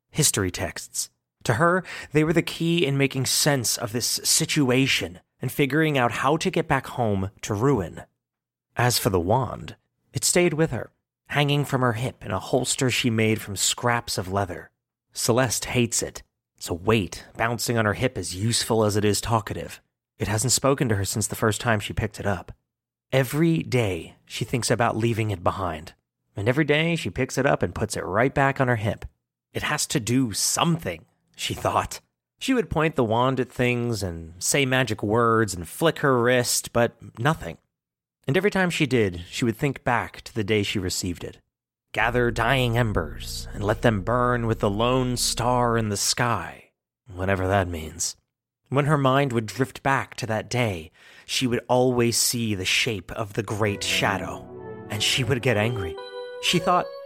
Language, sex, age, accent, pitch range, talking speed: English, male, 30-49, American, 105-135 Hz, 190 wpm